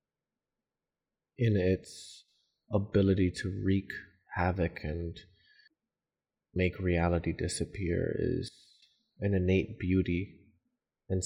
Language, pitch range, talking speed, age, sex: English, 85-100 Hz, 80 wpm, 30-49, male